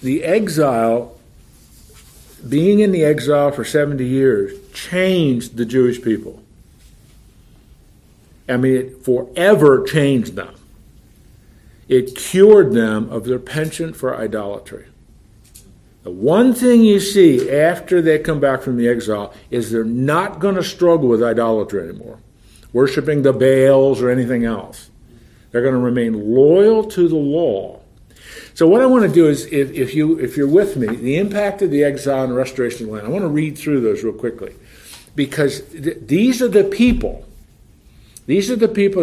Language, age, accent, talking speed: English, 50-69, American, 160 wpm